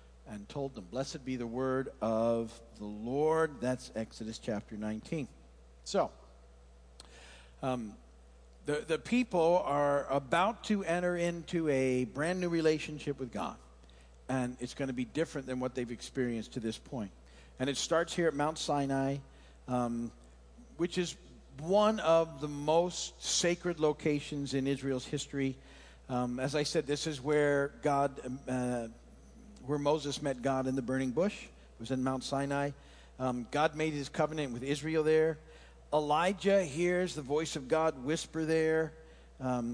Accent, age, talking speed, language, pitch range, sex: American, 50-69, 150 wpm, English, 110-155 Hz, male